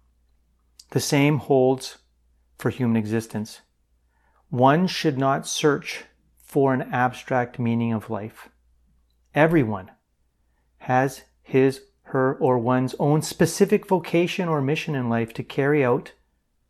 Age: 40-59